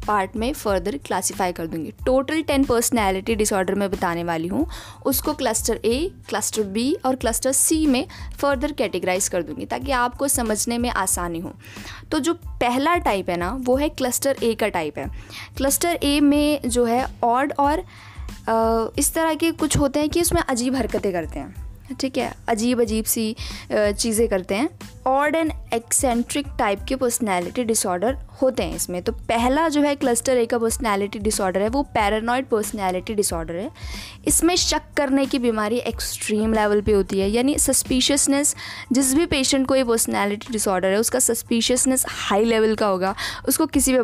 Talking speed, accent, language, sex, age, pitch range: 175 wpm, native, Hindi, female, 20-39, 215-275 Hz